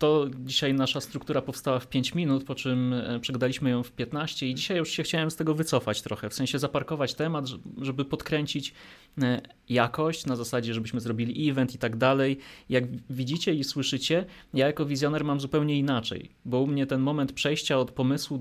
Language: Polish